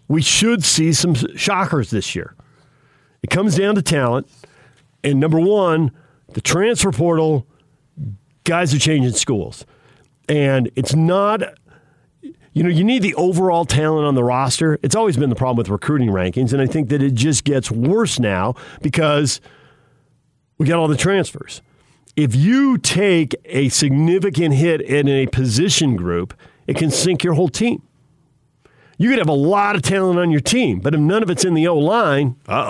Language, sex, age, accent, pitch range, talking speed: English, male, 50-69, American, 130-180 Hz, 170 wpm